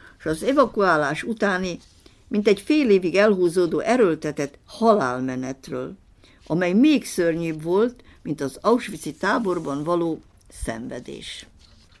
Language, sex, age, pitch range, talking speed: Hungarian, female, 60-79, 155-225 Hz, 105 wpm